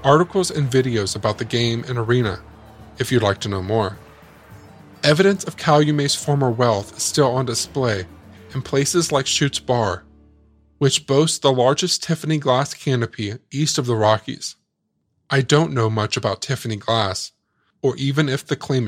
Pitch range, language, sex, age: 110-145 Hz, English, male, 20-39